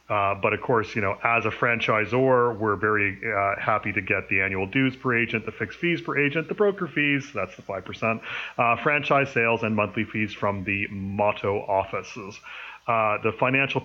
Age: 30-49